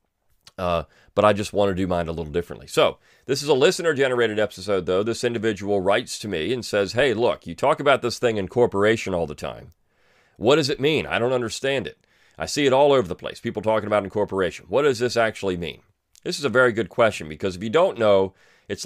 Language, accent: English, American